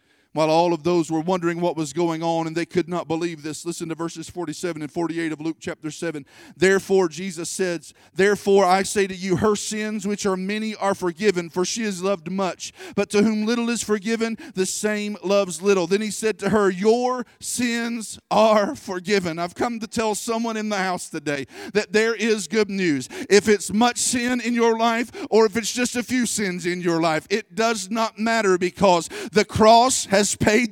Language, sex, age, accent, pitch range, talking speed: English, male, 40-59, American, 195-255 Hz, 205 wpm